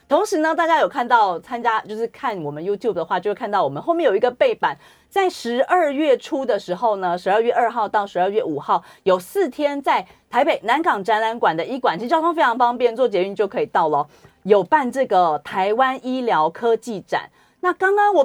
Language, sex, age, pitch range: Chinese, female, 30-49, 190-305 Hz